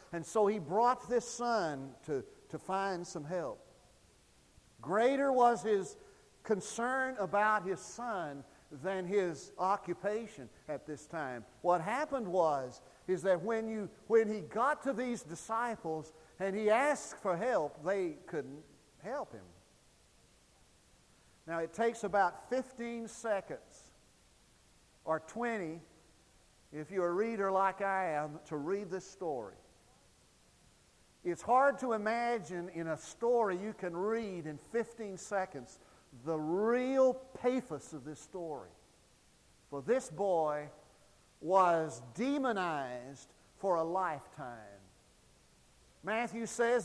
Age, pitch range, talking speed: 50-69, 160-230 Hz, 120 wpm